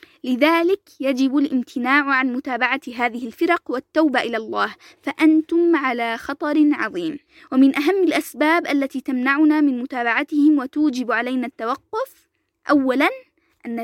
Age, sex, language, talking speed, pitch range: 20-39, female, Arabic, 115 wpm, 260-330 Hz